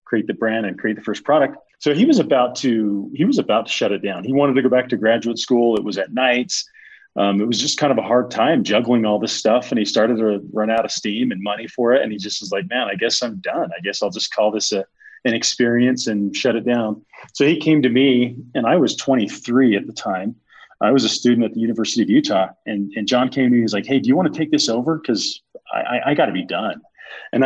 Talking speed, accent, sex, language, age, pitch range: 275 wpm, American, male, English, 30-49, 110-155 Hz